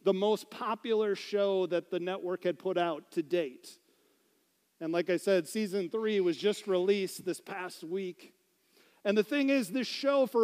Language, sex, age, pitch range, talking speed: English, male, 40-59, 190-240 Hz, 180 wpm